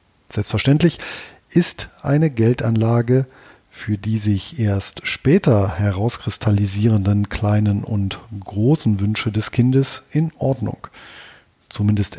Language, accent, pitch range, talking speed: German, German, 105-140 Hz, 95 wpm